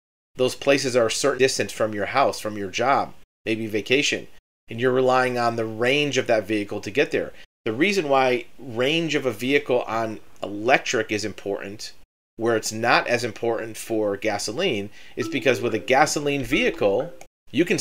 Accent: American